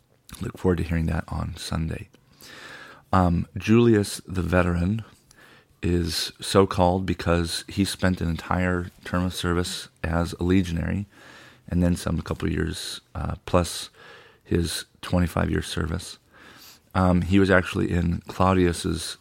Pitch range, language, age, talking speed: 85-100 Hz, English, 40-59, 130 wpm